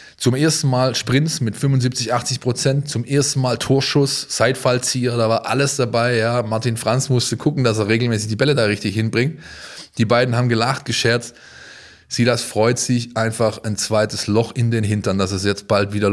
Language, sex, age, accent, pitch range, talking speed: German, male, 20-39, German, 105-125 Hz, 190 wpm